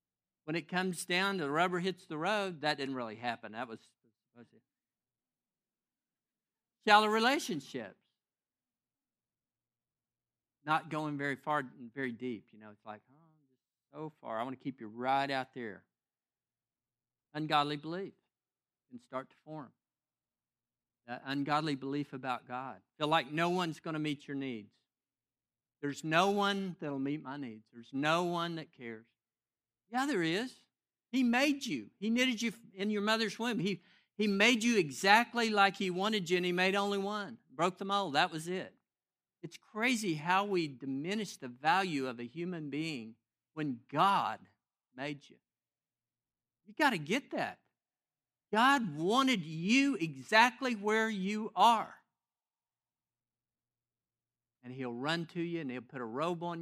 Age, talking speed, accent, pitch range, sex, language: 50-69, 155 wpm, American, 130-200 Hz, male, English